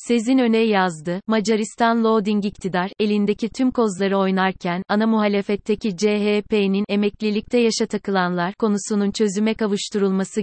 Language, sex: Turkish, female